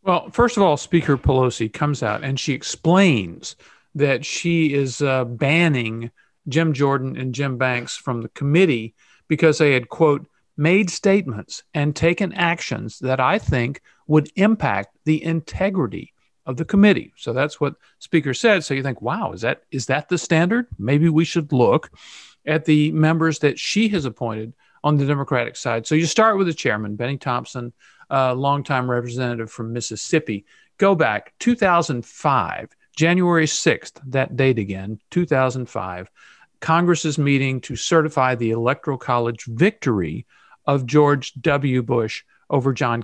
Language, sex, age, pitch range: English, male, 50-69, 125-165 Hz